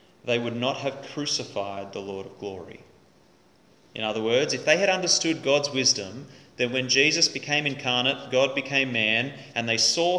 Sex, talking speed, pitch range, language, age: male, 170 wpm, 110-140 Hz, English, 30-49